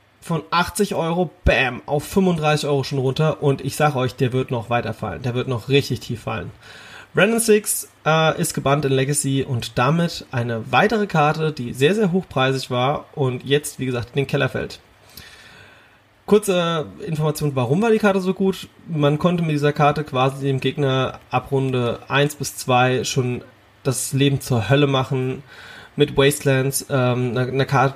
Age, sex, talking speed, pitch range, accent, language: 30-49, male, 175 wpm, 125-150 Hz, German, German